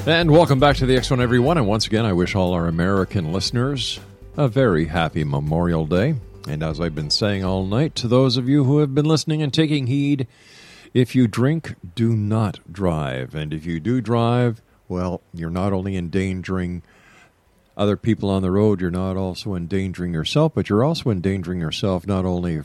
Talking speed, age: 190 wpm, 50-69